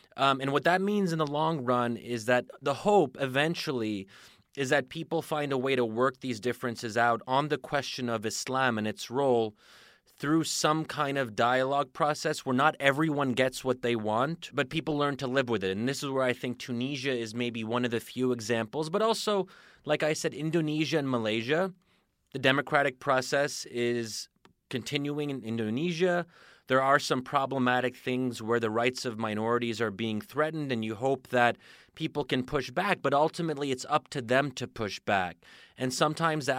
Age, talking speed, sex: 30-49, 190 wpm, male